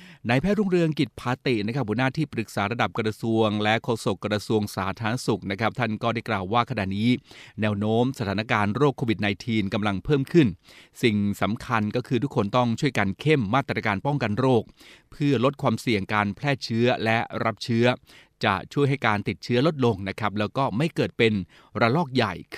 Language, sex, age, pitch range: Thai, male, 30-49, 105-130 Hz